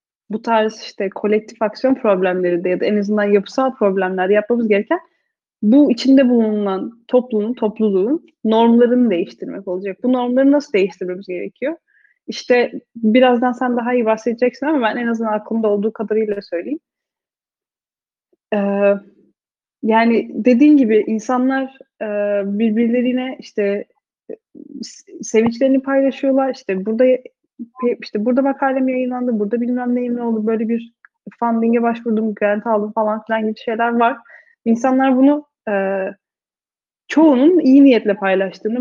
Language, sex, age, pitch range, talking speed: Turkish, female, 30-49, 210-255 Hz, 120 wpm